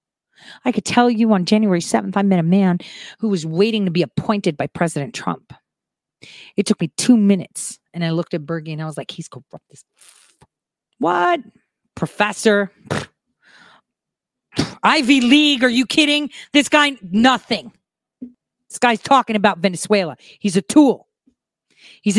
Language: English